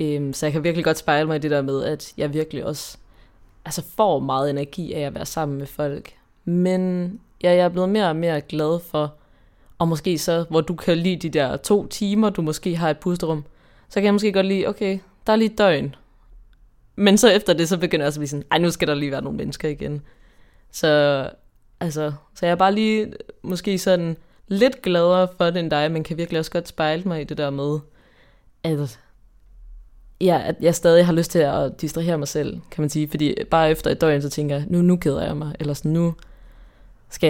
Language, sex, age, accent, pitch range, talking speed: Danish, female, 20-39, native, 145-170 Hz, 220 wpm